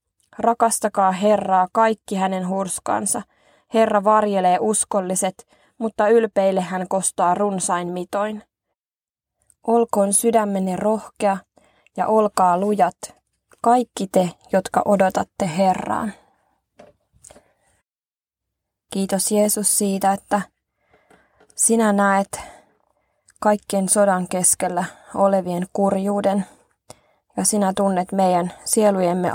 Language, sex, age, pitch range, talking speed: Finnish, female, 20-39, 180-210 Hz, 85 wpm